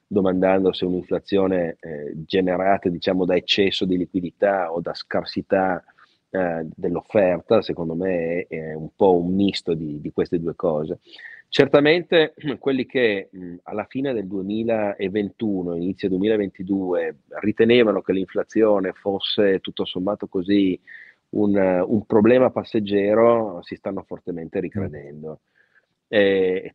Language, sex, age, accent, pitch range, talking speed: Italian, male, 30-49, native, 85-100 Hz, 120 wpm